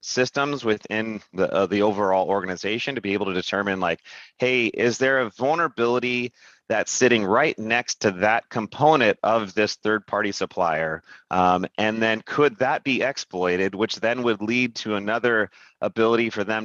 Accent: American